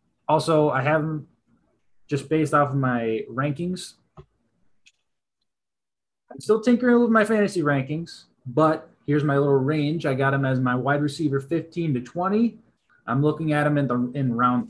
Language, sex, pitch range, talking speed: English, male, 120-155 Hz, 165 wpm